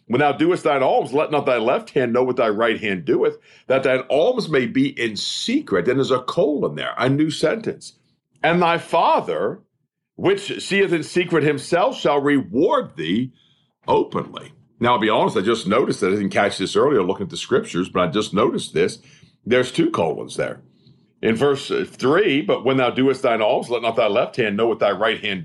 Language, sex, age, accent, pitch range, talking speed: English, male, 50-69, American, 125-170 Hz, 205 wpm